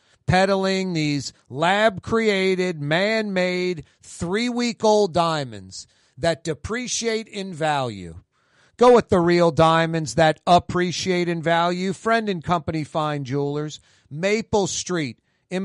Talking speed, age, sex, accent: 105 wpm, 40-59, male, American